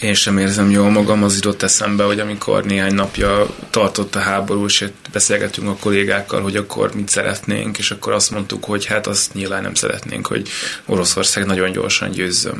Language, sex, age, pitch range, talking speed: Hungarian, male, 20-39, 95-110 Hz, 180 wpm